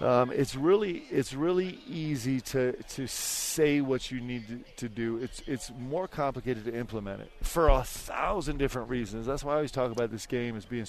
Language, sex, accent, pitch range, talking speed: English, male, American, 120-135 Hz, 205 wpm